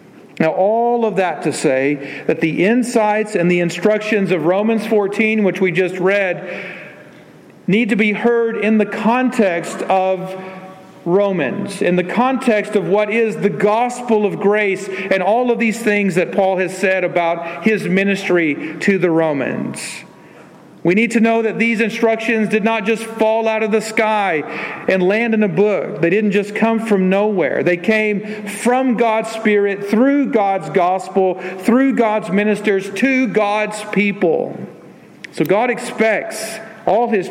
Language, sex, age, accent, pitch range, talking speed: English, male, 40-59, American, 185-220 Hz, 160 wpm